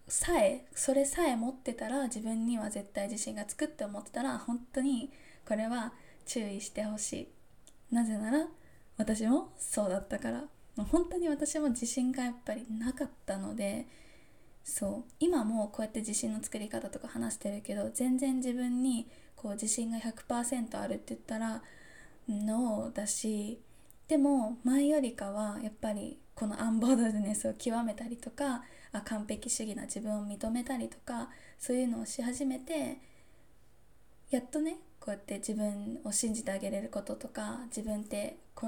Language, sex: Japanese, female